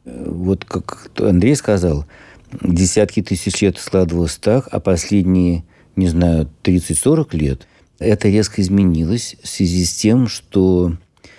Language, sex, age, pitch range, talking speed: Russian, male, 50-69, 85-100 Hz, 120 wpm